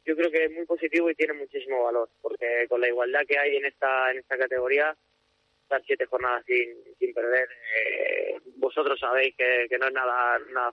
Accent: Spanish